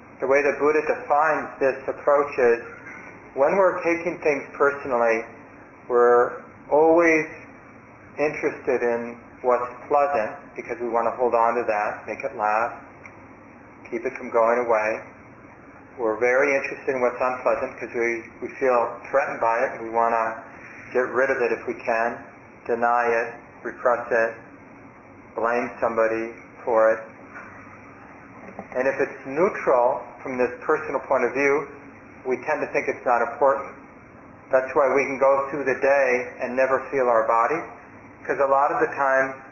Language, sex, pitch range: English, male, 115-140 Hz